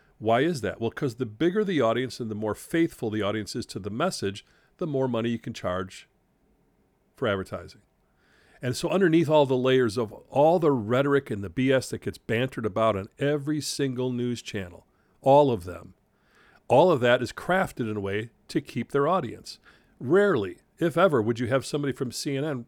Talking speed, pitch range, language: 195 wpm, 110-145 Hz, English